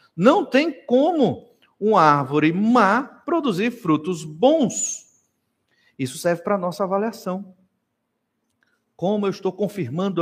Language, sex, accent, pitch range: Portuguese, male, Brazilian, 130-215 Hz